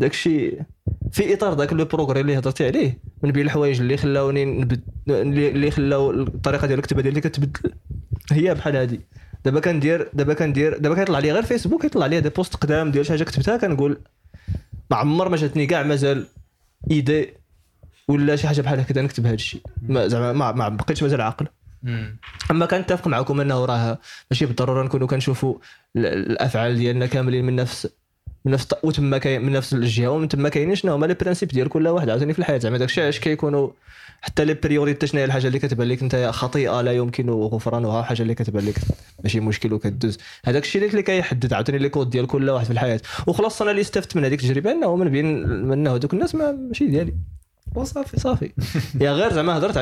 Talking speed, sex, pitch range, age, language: 200 wpm, male, 125-150 Hz, 20-39, Arabic